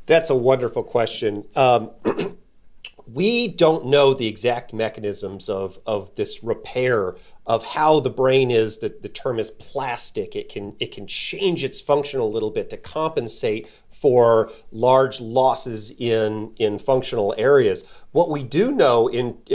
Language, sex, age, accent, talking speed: English, male, 40-59, American, 150 wpm